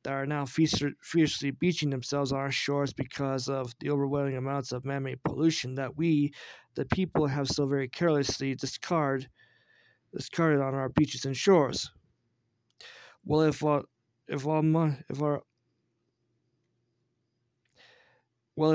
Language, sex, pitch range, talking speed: English, male, 135-155 Hz, 120 wpm